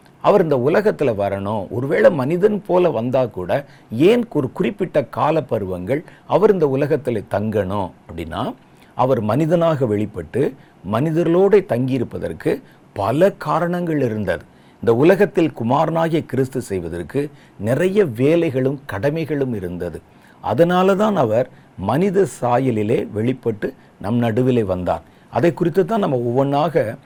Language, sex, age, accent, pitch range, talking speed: Tamil, male, 50-69, native, 110-170 Hz, 105 wpm